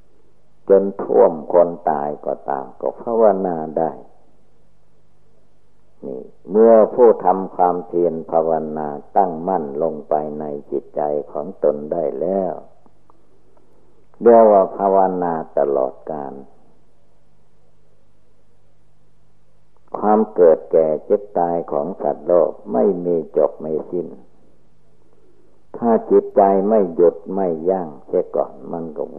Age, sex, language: 60-79, male, Thai